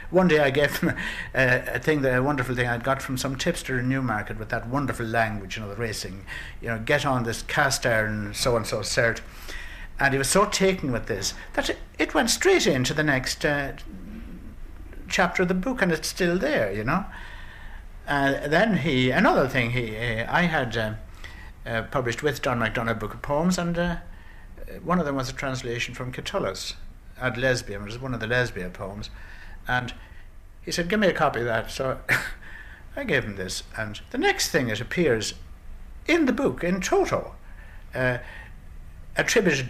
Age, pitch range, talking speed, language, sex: 60-79, 105-155 Hz, 190 wpm, English, male